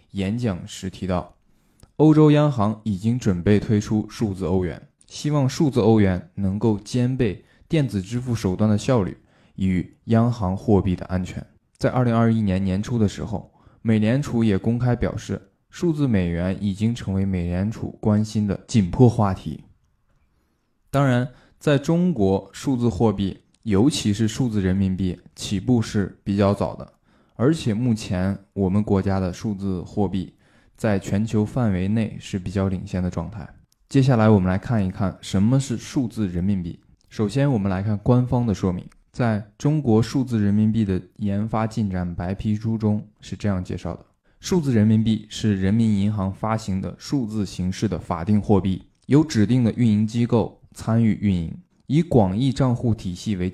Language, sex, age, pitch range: Chinese, male, 20-39, 95-115 Hz